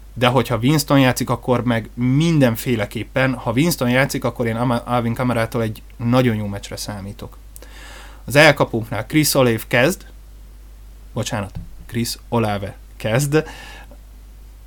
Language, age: Hungarian, 20-39